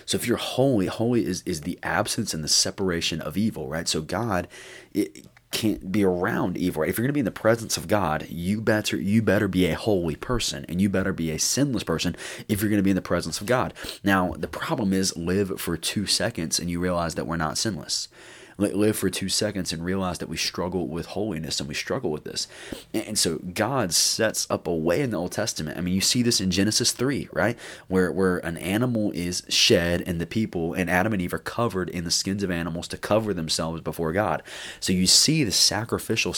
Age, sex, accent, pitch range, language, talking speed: 20-39, male, American, 85-100 Hz, English, 230 wpm